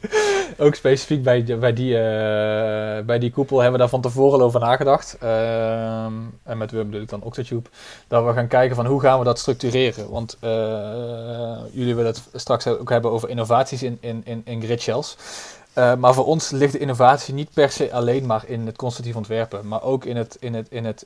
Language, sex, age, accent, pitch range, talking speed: Dutch, male, 20-39, Dutch, 110-125 Hz, 215 wpm